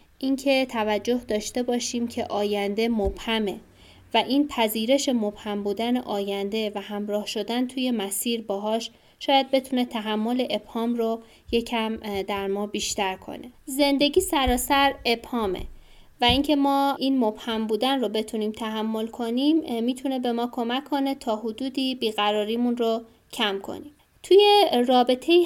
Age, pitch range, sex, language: 20-39, 215-255 Hz, female, Persian